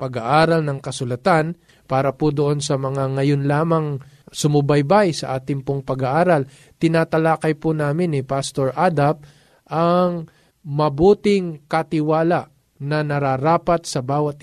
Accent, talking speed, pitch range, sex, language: native, 115 wpm, 135-170 Hz, male, Filipino